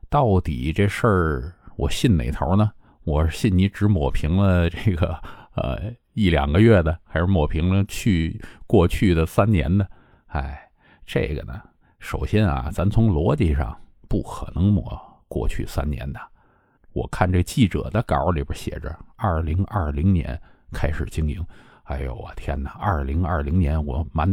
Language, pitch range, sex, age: Chinese, 80-100 Hz, male, 50-69